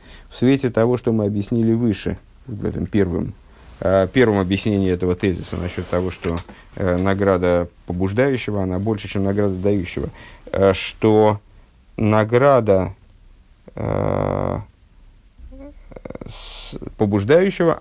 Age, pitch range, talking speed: 50-69, 95-120 Hz, 90 wpm